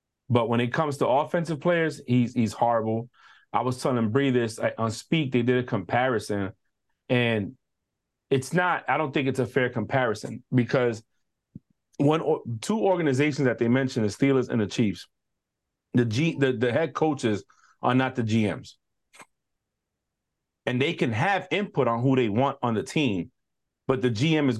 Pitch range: 115-145 Hz